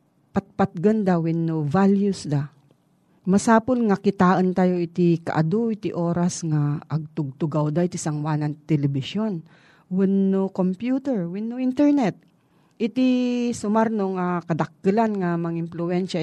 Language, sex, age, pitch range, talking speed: Filipino, female, 40-59, 160-200 Hz, 120 wpm